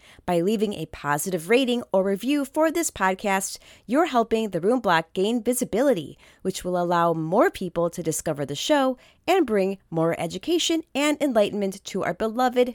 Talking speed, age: 165 wpm, 30-49